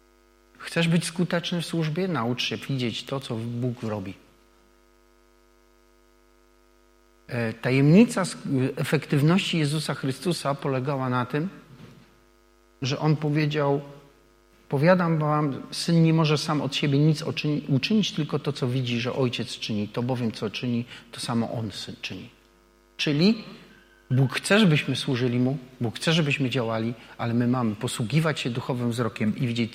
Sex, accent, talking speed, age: male, native, 135 wpm, 40-59